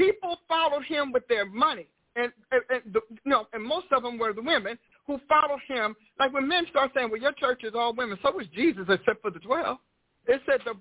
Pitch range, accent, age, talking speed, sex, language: 235-300 Hz, American, 50-69, 235 wpm, male, English